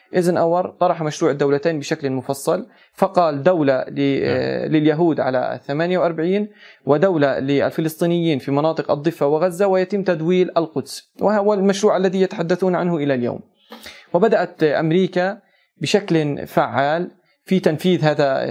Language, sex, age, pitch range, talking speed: Arabic, male, 20-39, 140-175 Hz, 115 wpm